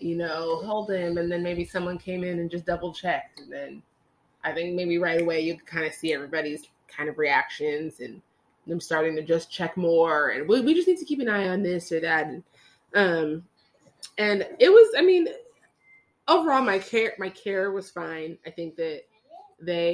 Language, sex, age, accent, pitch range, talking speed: English, female, 20-39, American, 170-215 Hz, 205 wpm